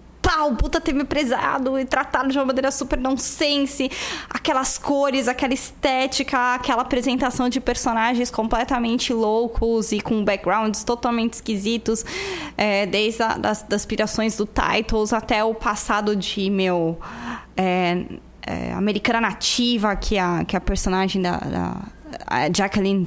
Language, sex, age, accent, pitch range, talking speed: Portuguese, female, 10-29, Brazilian, 205-255 Hz, 135 wpm